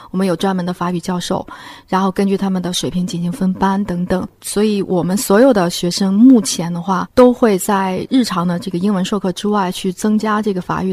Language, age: Chinese, 30-49